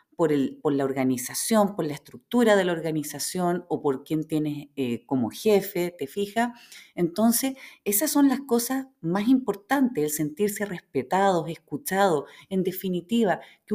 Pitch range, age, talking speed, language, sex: 165-230 Hz, 40-59, 145 wpm, Spanish, female